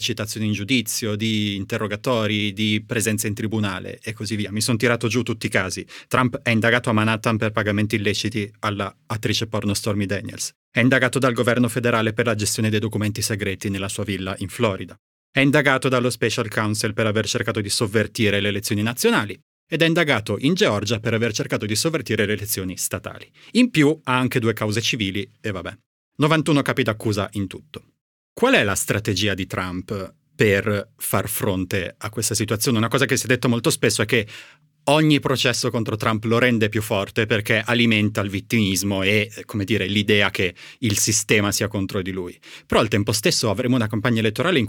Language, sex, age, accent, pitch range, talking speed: Italian, male, 30-49, native, 105-120 Hz, 190 wpm